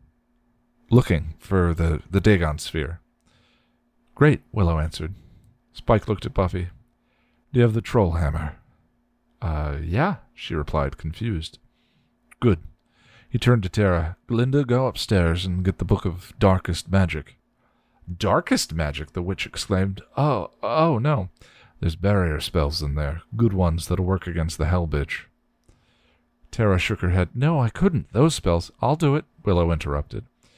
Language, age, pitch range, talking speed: English, 40-59, 80-115 Hz, 145 wpm